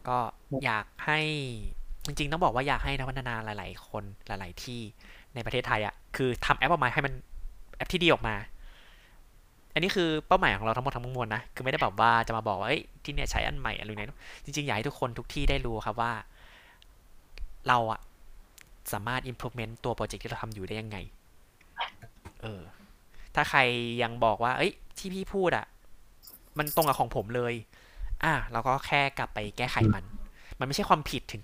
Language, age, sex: Thai, 20-39, male